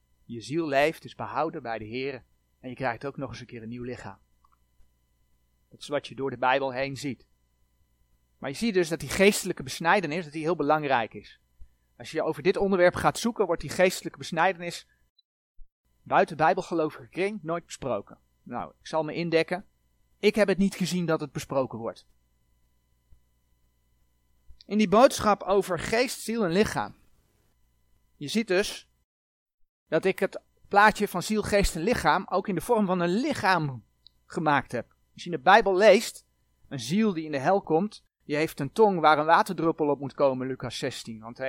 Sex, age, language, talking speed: male, 30-49, Dutch, 185 wpm